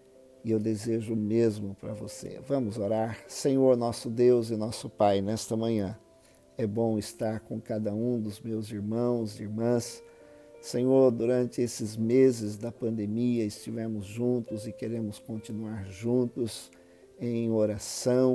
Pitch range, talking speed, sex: 110-125 Hz, 135 wpm, male